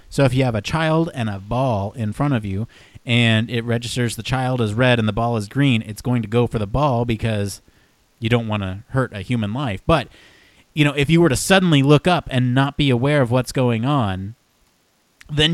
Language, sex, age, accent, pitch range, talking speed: English, male, 30-49, American, 105-145 Hz, 230 wpm